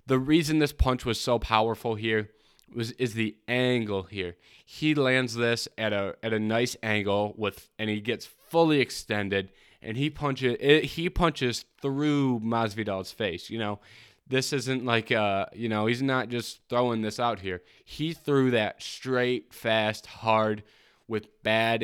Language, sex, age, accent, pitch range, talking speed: English, male, 20-39, American, 105-125 Hz, 165 wpm